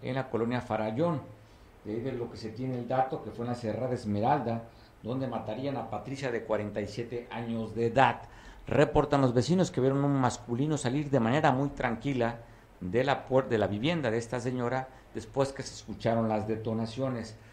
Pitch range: 110-130 Hz